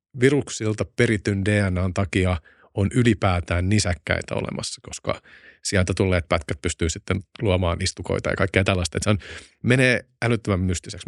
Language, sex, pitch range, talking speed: Finnish, male, 90-110 Hz, 135 wpm